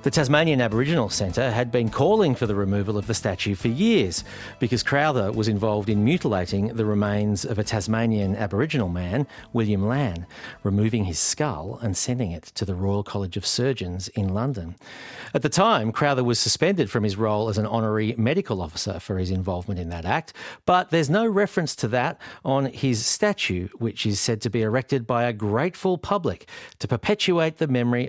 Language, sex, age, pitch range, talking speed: English, male, 40-59, 100-130 Hz, 185 wpm